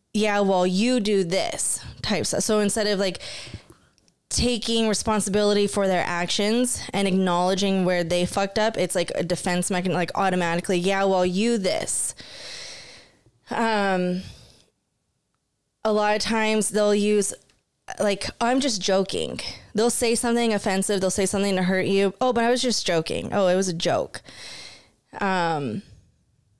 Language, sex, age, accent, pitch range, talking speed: English, female, 20-39, American, 180-230 Hz, 155 wpm